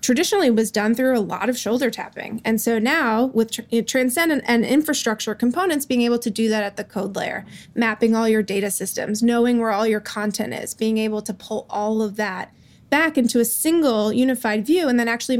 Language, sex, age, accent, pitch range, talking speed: English, female, 20-39, American, 215-250 Hz, 215 wpm